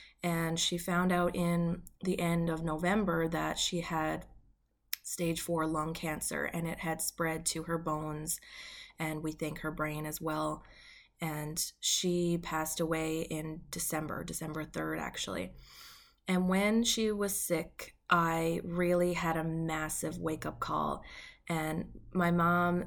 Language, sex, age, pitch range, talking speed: English, female, 20-39, 160-175 Hz, 140 wpm